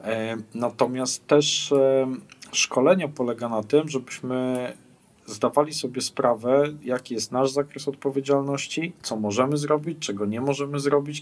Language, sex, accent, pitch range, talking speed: Polish, male, native, 120-145 Hz, 120 wpm